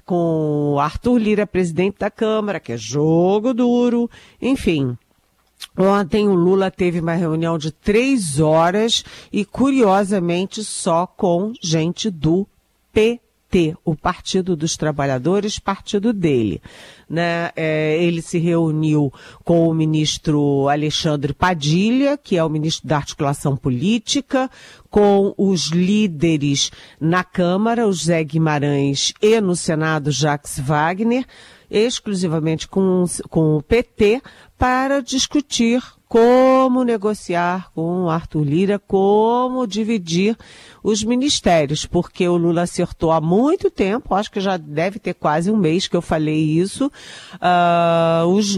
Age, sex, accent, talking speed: 50-69, female, Brazilian, 120 wpm